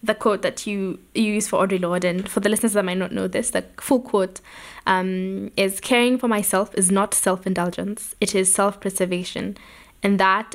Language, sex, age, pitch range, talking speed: English, female, 10-29, 190-220 Hz, 195 wpm